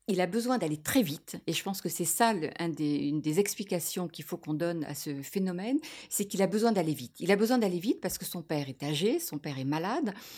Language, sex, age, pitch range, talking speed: French, female, 50-69, 170-230 Hz, 260 wpm